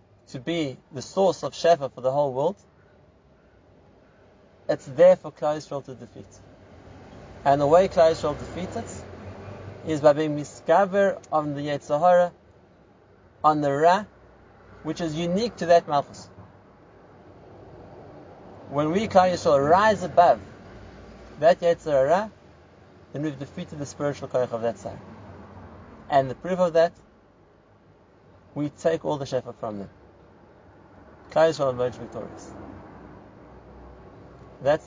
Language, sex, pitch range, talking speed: English, male, 100-150 Hz, 125 wpm